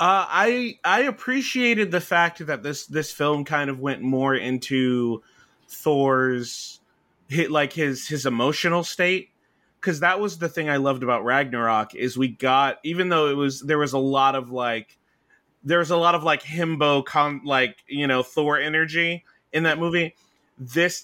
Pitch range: 125-155 Hz